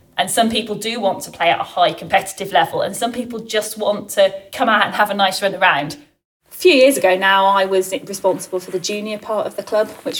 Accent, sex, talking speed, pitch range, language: British, female, 245 wpm, 185-210 Hz, English